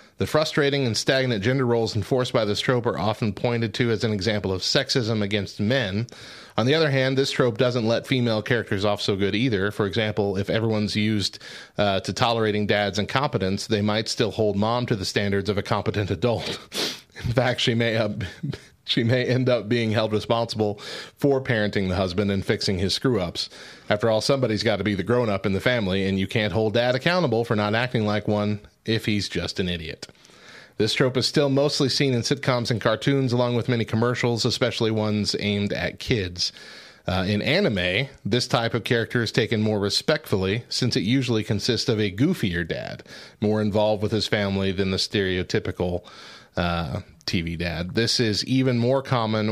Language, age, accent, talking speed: English, 30-49, American, 190 wpm